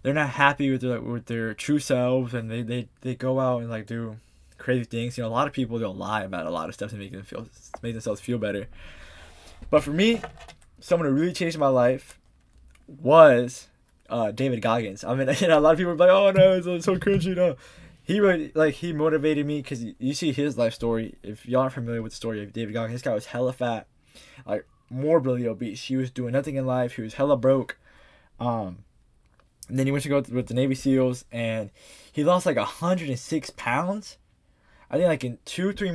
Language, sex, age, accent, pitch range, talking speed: English, male, 20-39, American, 115-145 Hz, 230 wpm